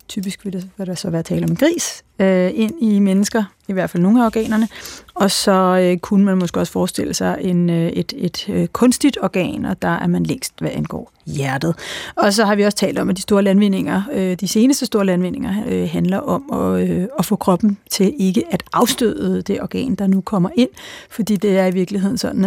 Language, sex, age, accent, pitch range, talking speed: Danish, female, 30-49, native, 180-220 Hz, 200 wpm